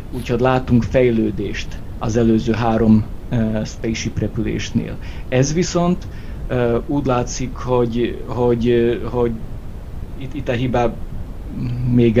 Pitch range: 110-125 Hz